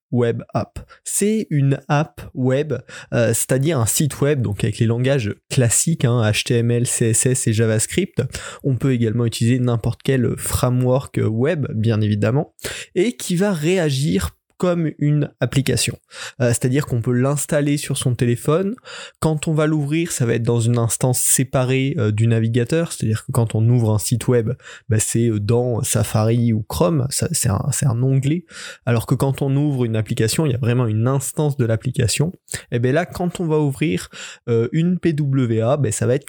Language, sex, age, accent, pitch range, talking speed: French, male, 20-39, French, 120-150 Hz, 175 wpm